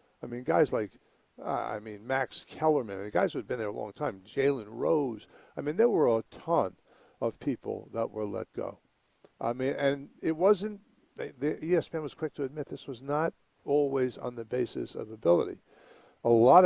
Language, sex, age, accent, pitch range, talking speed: English, male, 60-79, American, 115-150 Hz, 185 wpm